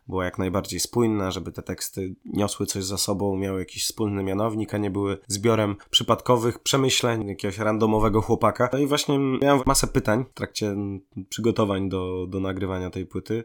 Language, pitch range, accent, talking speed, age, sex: Polish, 95-110 Hz, native, 170 wpm, 20-39, male